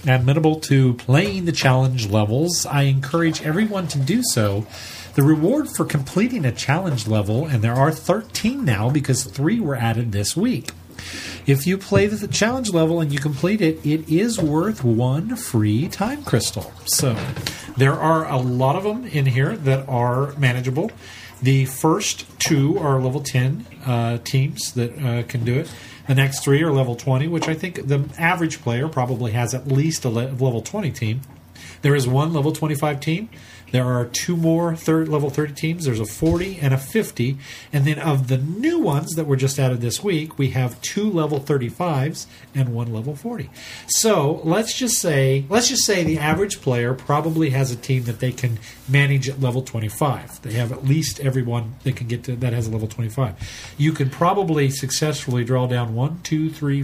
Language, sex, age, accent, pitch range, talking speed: English, male, 40-59, American, 120-160 Hz, 190 wpm